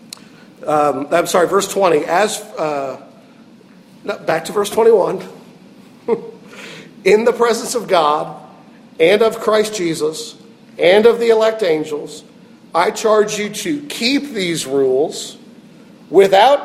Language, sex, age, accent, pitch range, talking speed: English, male, 50-69, American, 205-265 Hz, 125 wpm